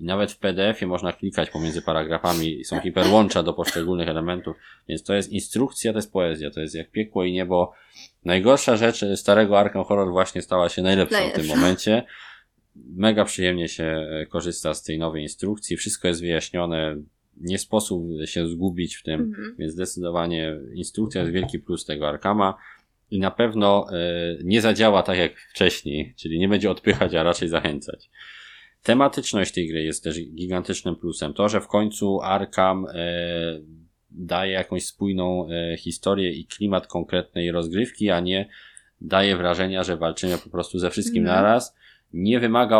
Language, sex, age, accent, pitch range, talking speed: Polish, male, 20-39, native, 85-100 Hz, 155 wpm